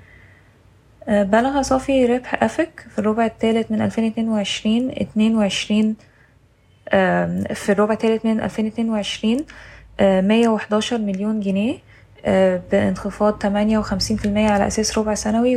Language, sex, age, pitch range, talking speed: Arabic, female, 10-29, 195-225 Hz, 110 wpm